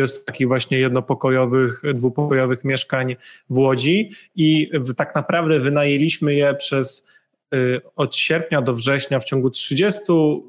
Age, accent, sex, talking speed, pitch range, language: 20-39, native, male, 120 wpm, 130-150 Hz, Polish